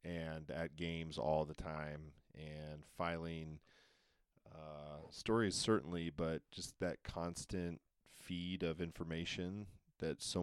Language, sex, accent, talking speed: English, male, American, 115 wpm